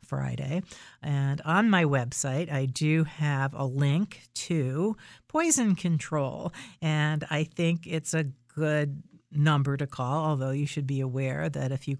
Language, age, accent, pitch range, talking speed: English, 50-69, American, 135-165 Hz, 150 wpm